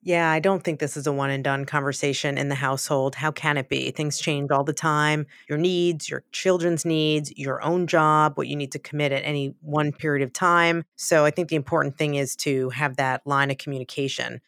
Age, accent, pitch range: 30-49, American, 140-170 Hz